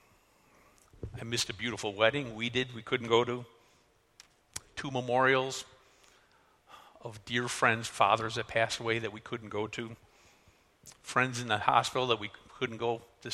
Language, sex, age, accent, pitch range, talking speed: English, male, 50-69, American, 105-120 Hz, 155 wpm